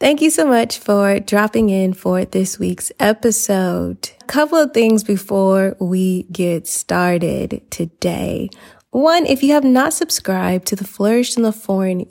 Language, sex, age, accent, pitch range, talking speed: English, female, 20-39, American, 190-240 Hz, 160 wpm